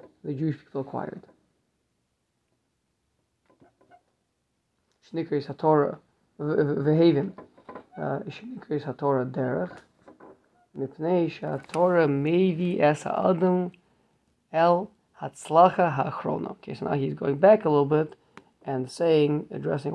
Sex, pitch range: male, 135-170 Hz